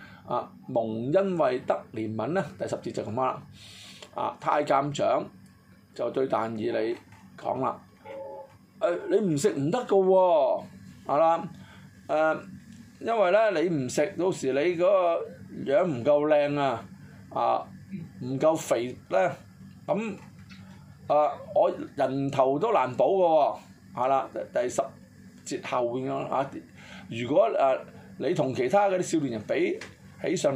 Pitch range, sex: 115-170 Hz, male